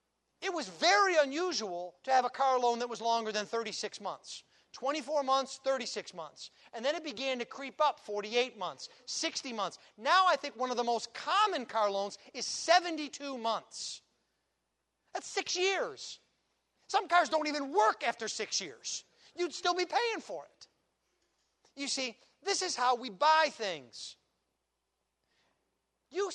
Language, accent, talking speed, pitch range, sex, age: English, American, 155 wpm, 220-315 Hz, male, 30-49